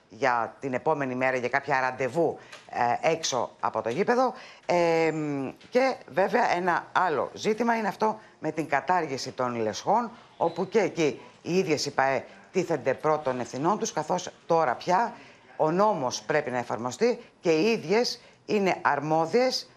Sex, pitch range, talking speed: female, 135-205 Hz, 145 wpm